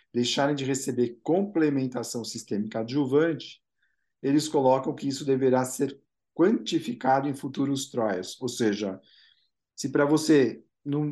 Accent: Brazilian